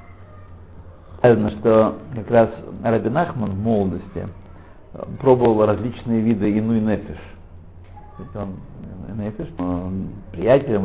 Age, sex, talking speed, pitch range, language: 60-79, male, 95 wpm, 90-110 Hz, Russian